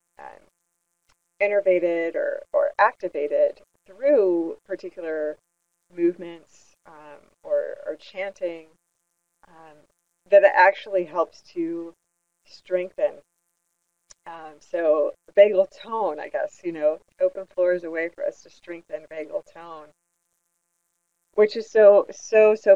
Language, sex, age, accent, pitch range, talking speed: English, female, 30-49, American, 170-210 Hz, 115 wpm